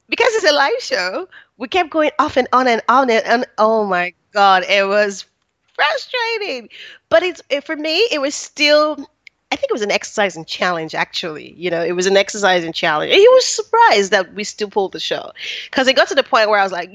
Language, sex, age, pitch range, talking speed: English, female, 30-49, 180-260 Hz, 235 wpm